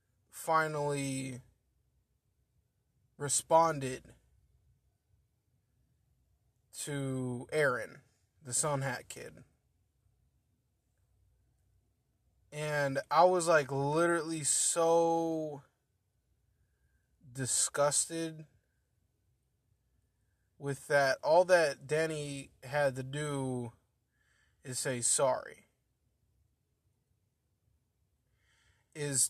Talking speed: 55 wpm